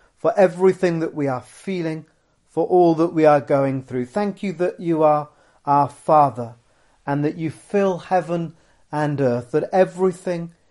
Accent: British